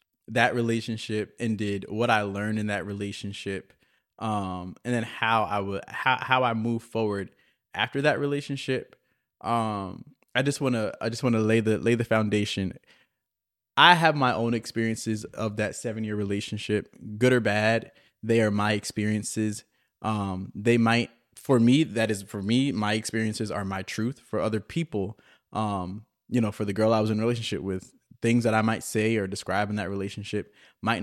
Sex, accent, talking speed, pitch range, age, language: male, American, 185 wpm, 100-120 Hz, 20-39, English